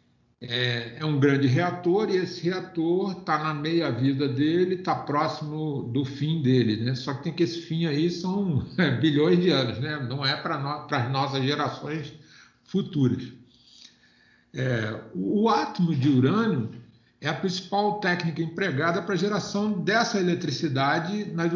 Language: Portuguese